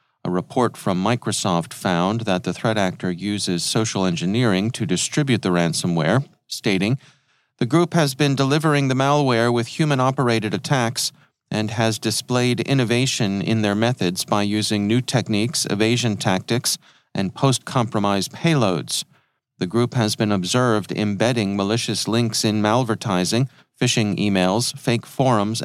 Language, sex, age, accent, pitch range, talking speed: English, male, 40-59, American, 100-130 Hz, 135 wpm